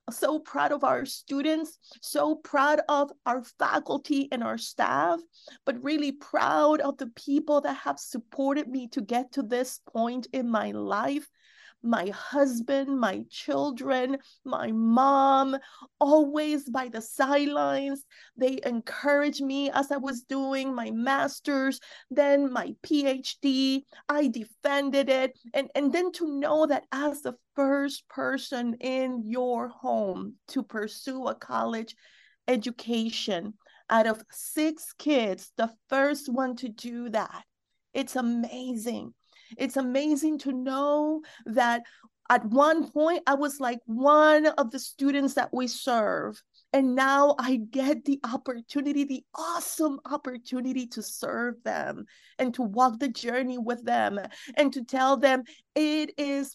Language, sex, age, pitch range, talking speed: English, female, 30-49, 245-290 Hz, 135 wpm